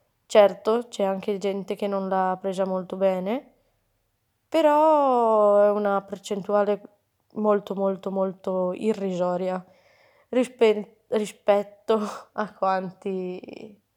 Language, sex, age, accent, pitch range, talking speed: Italian, female, 20-39, native, 190-225 Hz, 90 wpm